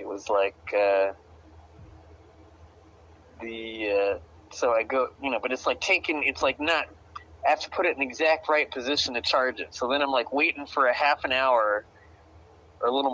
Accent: American